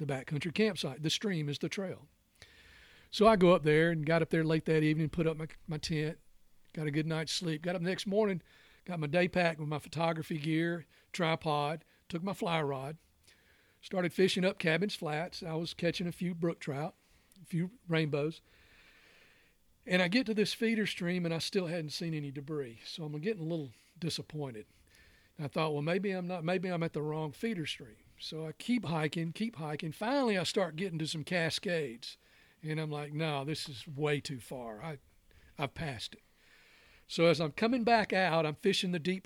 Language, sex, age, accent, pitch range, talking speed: English, male, 40-59, American, 150-185 Hz, 200 wpm